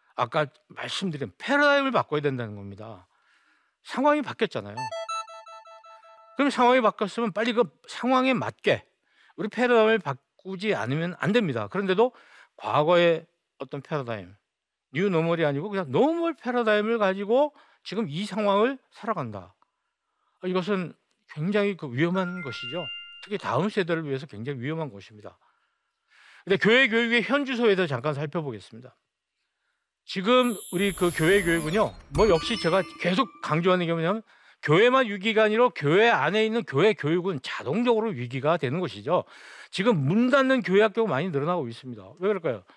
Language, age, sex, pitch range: Korean, 50-69, male, 155-235 Hz